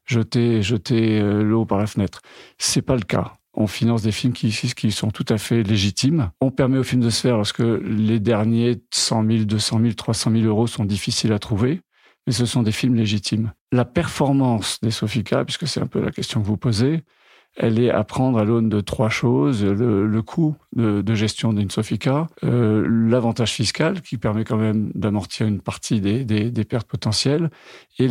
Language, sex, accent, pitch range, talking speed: French, male, French, 110-125 Hz, 205 wpm